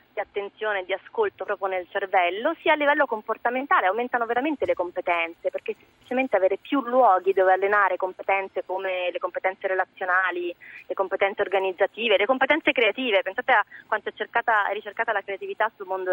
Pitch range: 195-260 Hz